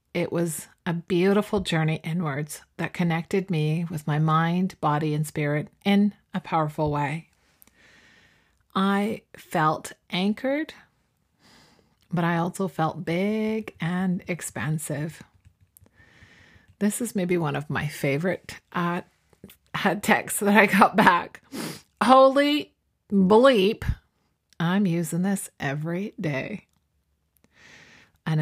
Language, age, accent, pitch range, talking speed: English, 40-59, American, 145-180 Hz, 105 wpm